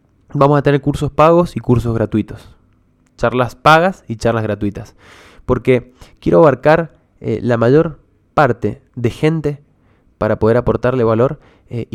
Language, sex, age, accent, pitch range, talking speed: Spanish, male, 20-39, Argentinian, 110-140 Hz, 135 wpm